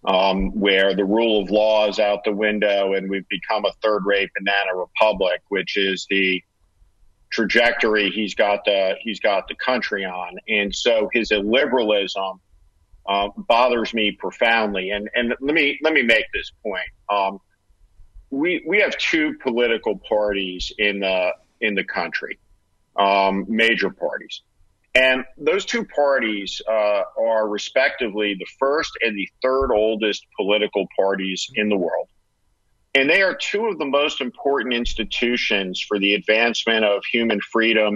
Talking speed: 150 wpm